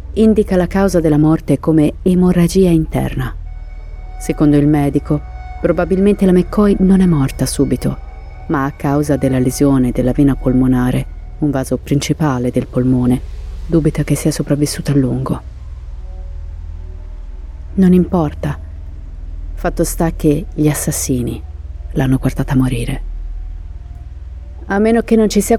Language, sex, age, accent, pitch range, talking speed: Italian, female, 30-49, native, 125-170 Hz, 125 wpm